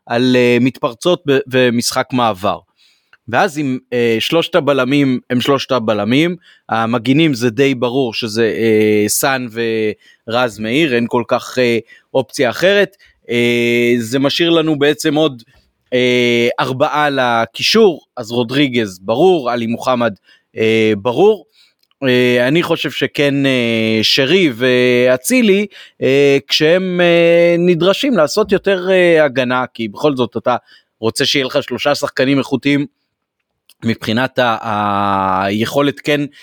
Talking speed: 110 wpm